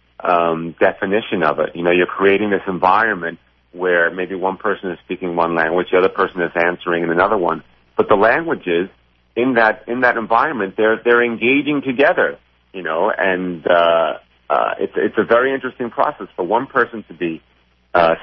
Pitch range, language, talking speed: 85-120 Hz, English, 180 wpm